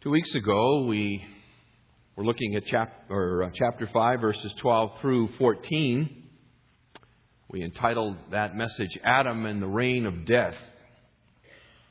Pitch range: 100-125 Hz